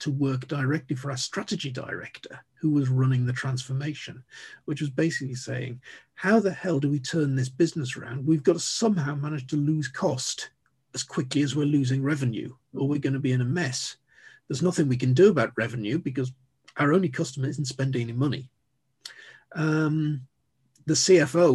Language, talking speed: English, 180 wpm